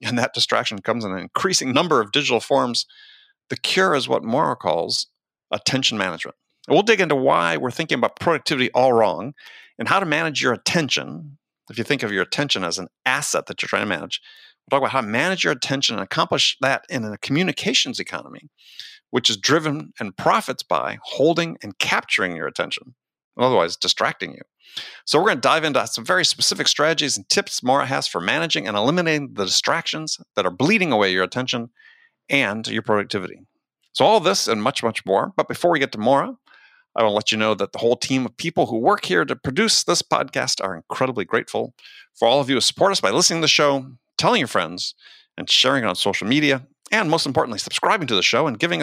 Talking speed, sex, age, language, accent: 215 wpm, male, 50-69, English, American